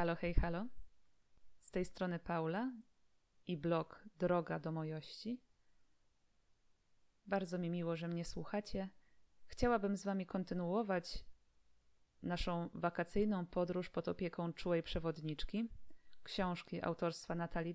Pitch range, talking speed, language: 160-195 Hz, 110 wpm, Polish